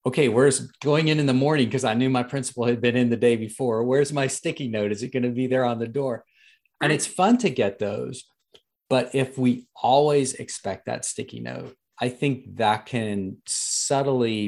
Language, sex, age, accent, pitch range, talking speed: English, male, 40-59, American, 95-125 Hz, 205 wpm